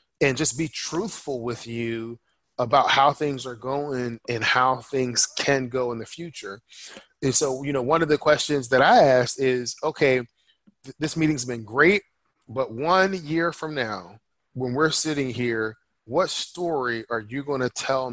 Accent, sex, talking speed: American, male, 170 wpm